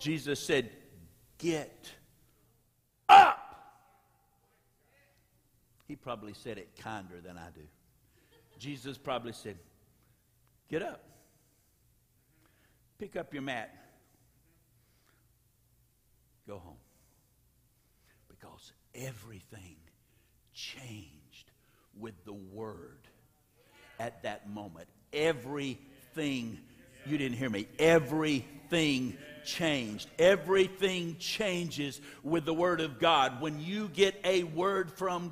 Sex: male